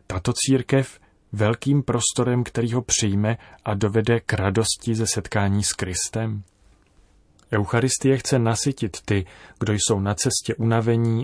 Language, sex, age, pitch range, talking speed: Czech, male, 30-49, 100-115 Hz, 130 wpm